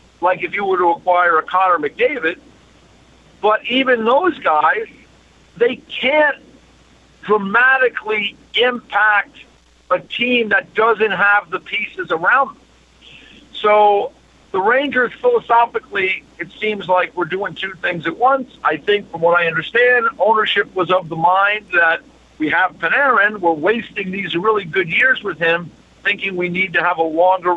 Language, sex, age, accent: English, male, 50-69, American